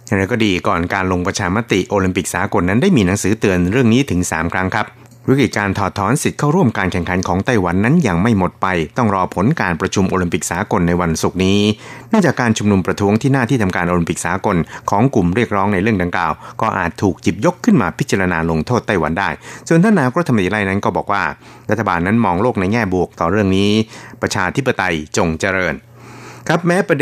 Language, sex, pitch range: Thai, male, 90-115 Hz